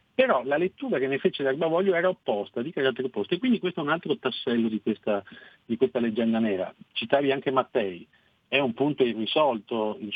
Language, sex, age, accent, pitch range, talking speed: Italian, male, 50-69, native, 100-130 Hz, 195 wpm